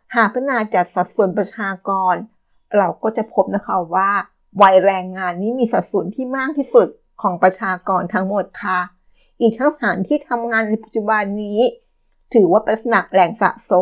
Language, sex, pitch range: Thai, female, 190-235 Hz